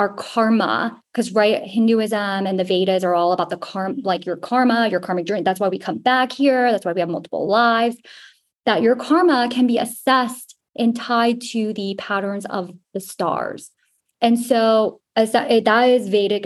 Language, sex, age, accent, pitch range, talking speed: English, female, 20-39, American, 190-230 Hz, 195 wpm